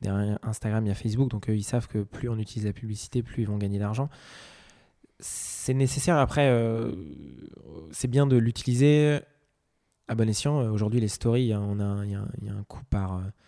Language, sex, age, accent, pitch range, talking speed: French, male, 20-39, French, 105-125 Hz, 200 wpm